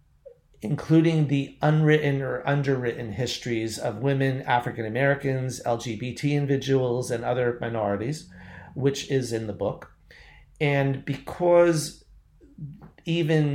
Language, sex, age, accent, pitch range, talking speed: English, male, 40-59, American, 115-140 Hz, 95 wpm